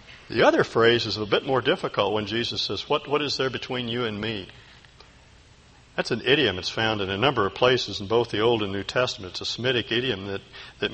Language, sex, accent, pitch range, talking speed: English, male, American, 105-145 Hz, 230 wpm